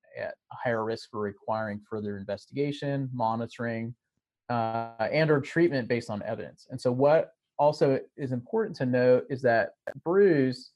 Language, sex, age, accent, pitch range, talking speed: English, male, 30-49, American, 115-145 Hz, 150 wpm